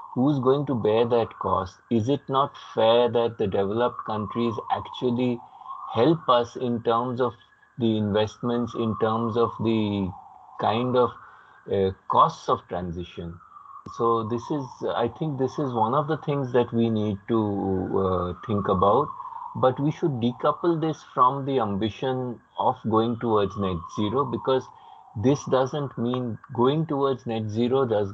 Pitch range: 105-125 Hz